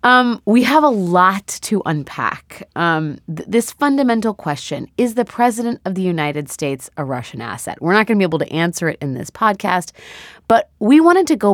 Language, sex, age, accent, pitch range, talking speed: English, female, 30-49, American, 145-215 Hz, 200 wpm